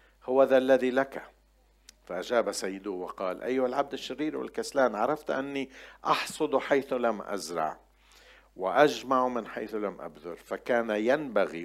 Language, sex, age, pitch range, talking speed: Arabic, male, 50-69, 95-130 Hz, 125 wpm